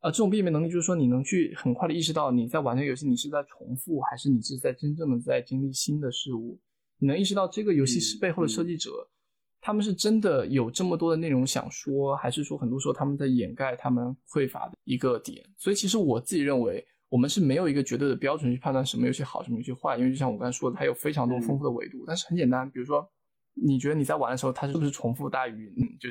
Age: 20-39